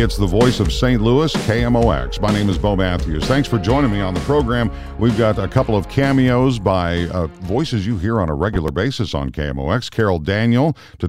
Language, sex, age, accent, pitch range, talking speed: English, male, 50-69, American, 90-115 Hz, 210 wpm